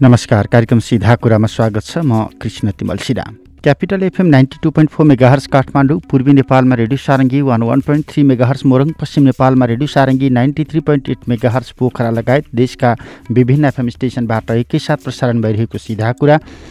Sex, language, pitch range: male, English, 120-175 Hz